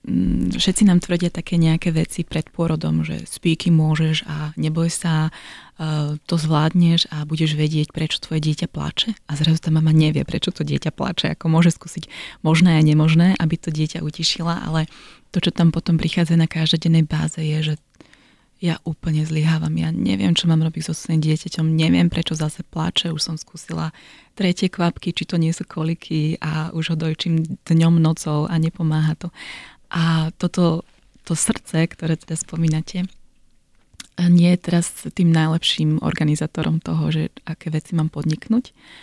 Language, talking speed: Slovak, 160 wpm